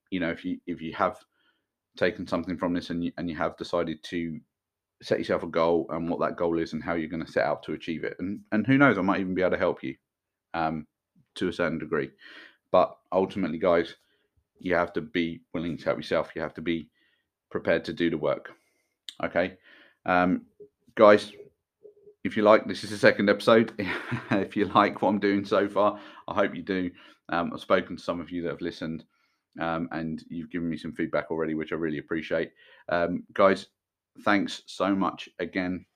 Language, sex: English, male